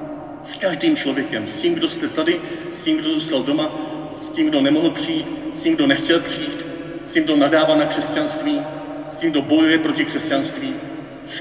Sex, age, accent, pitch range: male, 40-59, native, 285-320 Hz